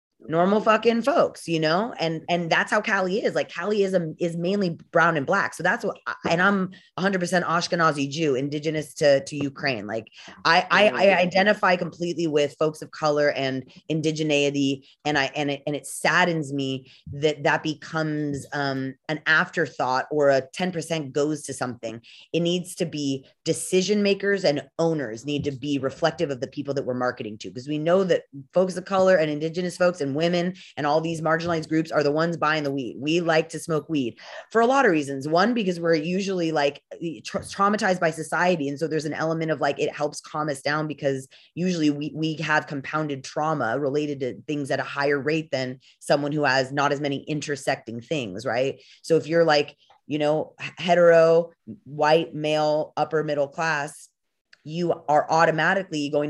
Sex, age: female, 20-39